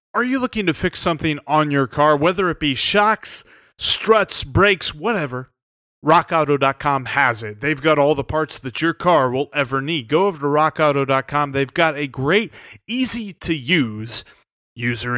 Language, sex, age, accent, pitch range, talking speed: English, male, 30-49, American, 130-165 Hz, 160 wpm